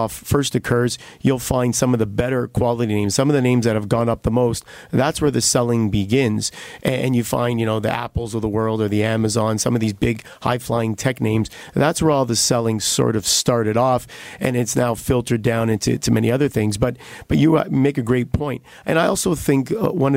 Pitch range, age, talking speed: 115-135 Hz, 40-59, 225 wpm